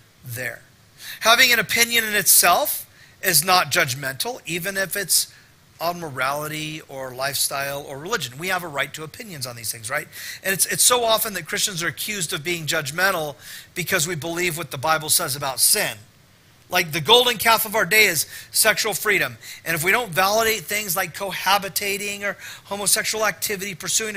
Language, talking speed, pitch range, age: English, 175 wpm, 155-220 Hz, 40-59